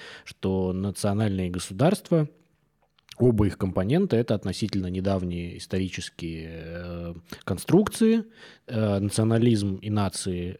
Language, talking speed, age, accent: Russian, 80 wpm, 20-39, native